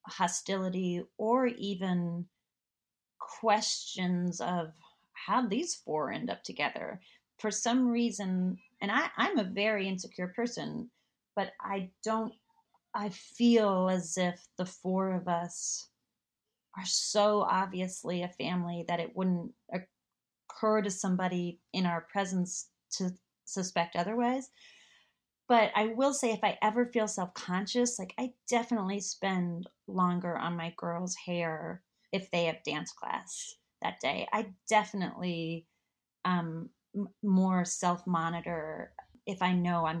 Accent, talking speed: American, 125 wpm